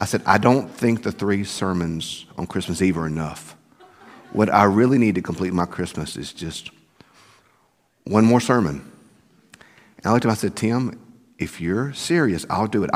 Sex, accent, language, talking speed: male, American, English, 185 wpm